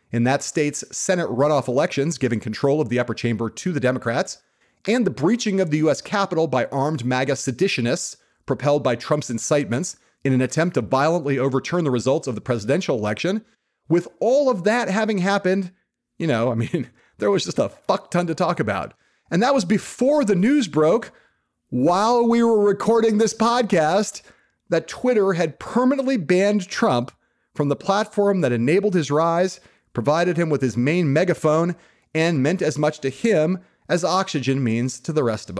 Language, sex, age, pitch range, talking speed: English, male, 40-59, 130-195 Hz, 180 wpm